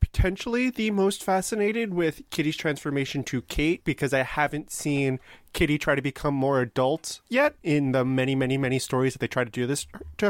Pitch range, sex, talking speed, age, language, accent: 125-175 Hz, male, 190 wpm, 30-49, English, American